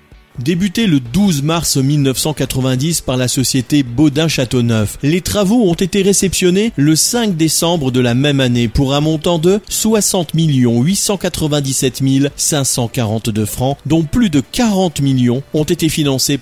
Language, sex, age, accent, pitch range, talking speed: French, male, 40-59, French, 125-170 Hz, 140 wpm